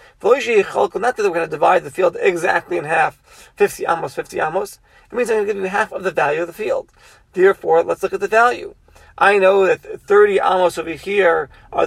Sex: male